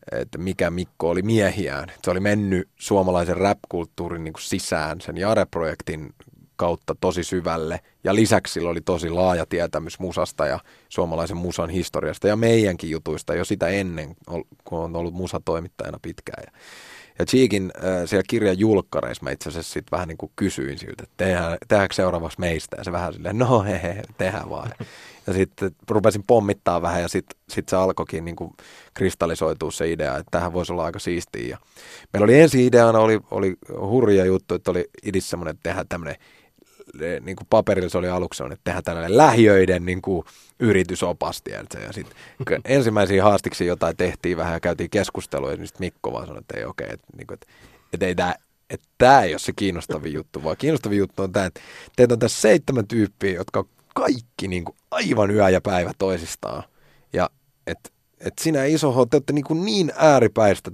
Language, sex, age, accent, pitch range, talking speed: Finnish, male, 30-49, native, 85-105 Hz, 165 wpm